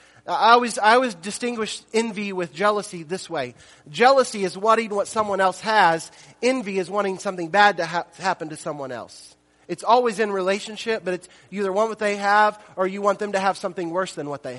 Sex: male